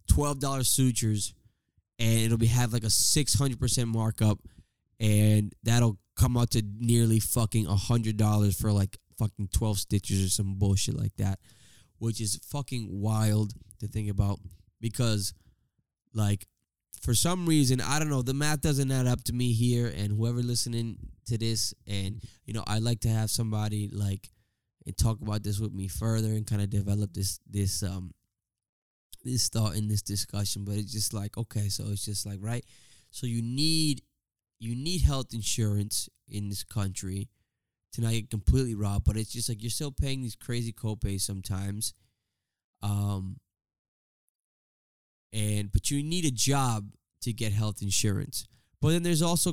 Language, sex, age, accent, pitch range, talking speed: English, male, 10-29, American, 100-120 Hz, 165 wpm